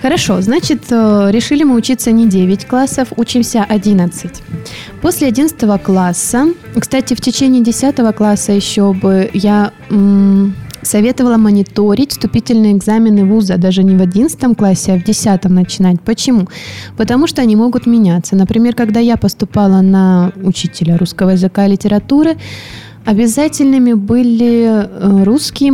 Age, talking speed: 20-39, 130 wpm